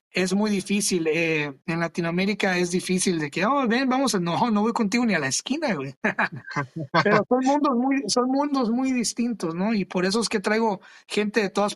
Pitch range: 175-220 Hz